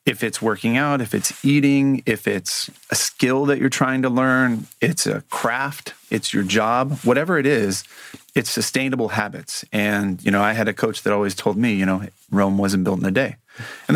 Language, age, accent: English, 30-49, American